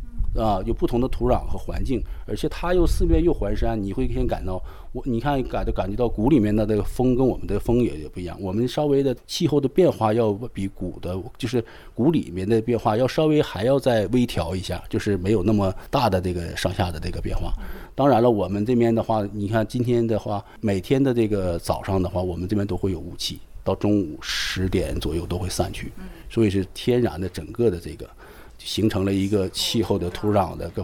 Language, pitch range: Chinese, 95-120 Hz